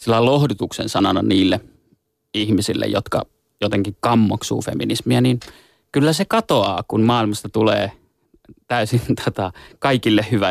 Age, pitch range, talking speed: 30-49, 105-120 Hz, 115 wpm